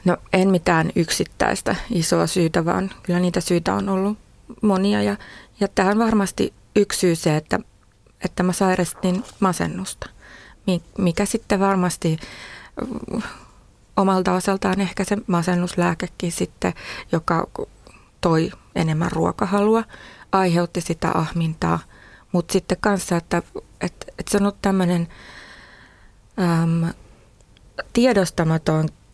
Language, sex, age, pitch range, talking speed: Finnish, female, 20-39, 165-195 Hz, 110 wpm